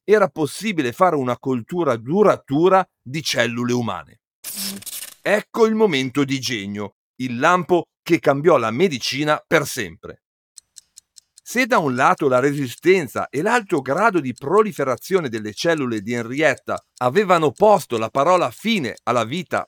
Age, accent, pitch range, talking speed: 50-69, native, 125-195 Hz, 135 wpm